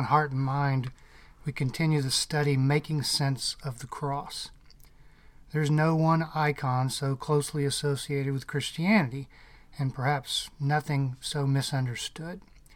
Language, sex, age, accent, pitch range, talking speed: English, male, 50-69, American, 135-160 Hz, 120 wpm